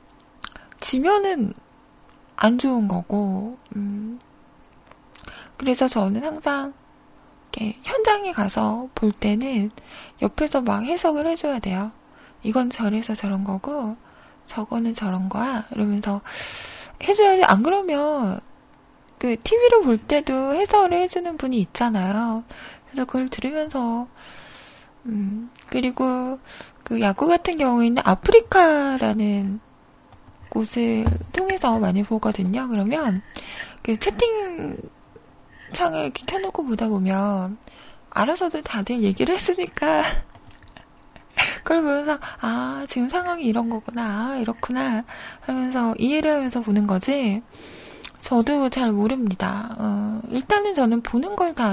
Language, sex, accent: Korean, female, native